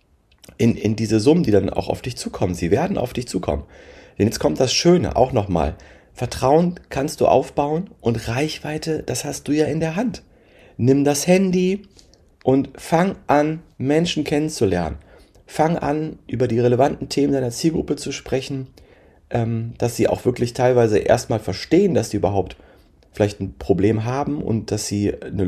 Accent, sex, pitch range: German, male, 100-140 Hz